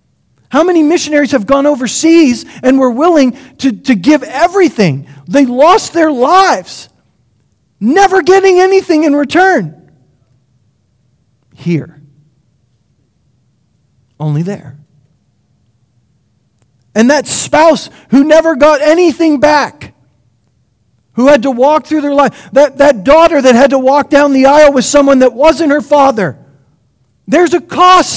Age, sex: 40-59, male